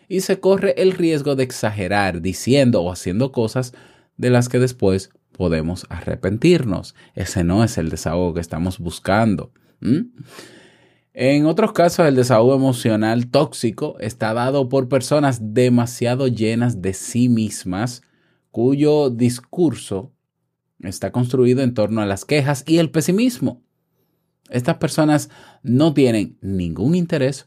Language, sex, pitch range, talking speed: Spanish, male, 100-140 Hz, 130 wpm